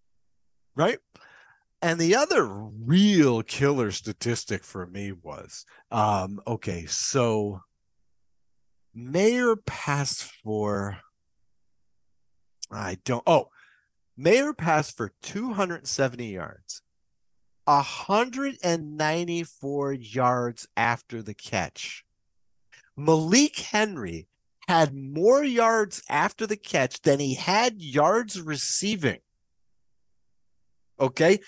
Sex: male